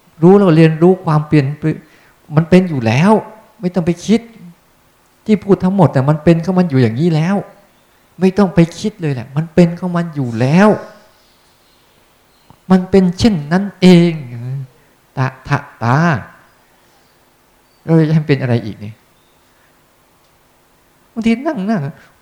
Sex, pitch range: male, 115-175 Hz